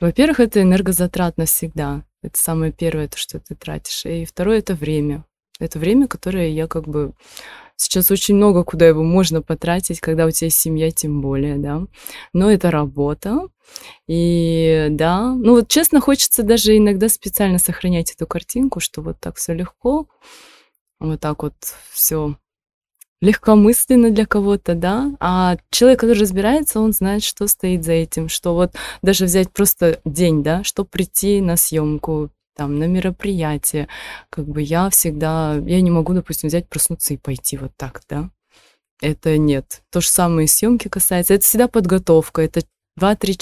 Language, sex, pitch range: Russian, female, 155-200 Hz